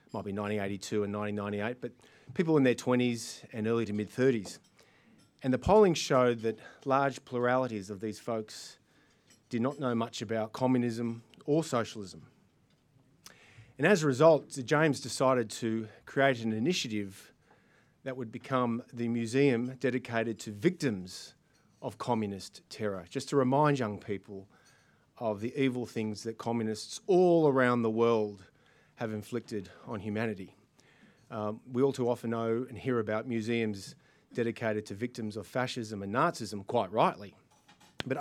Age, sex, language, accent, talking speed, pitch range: 30-49, male, English, Australian, 145 wpm, 110-135 Hz